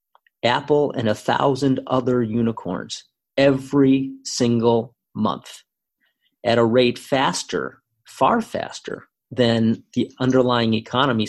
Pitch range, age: 110-125 Hz, 40-59